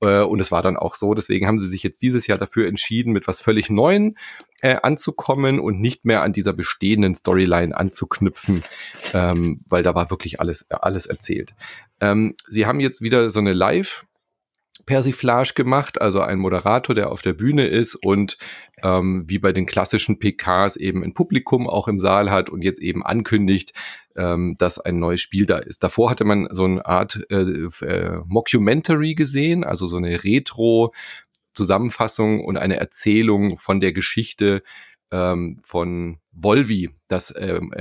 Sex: male